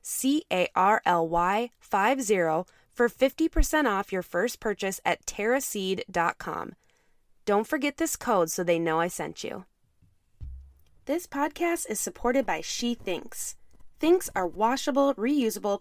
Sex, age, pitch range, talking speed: female, 20-39, 185-270 Hz, 135 wpm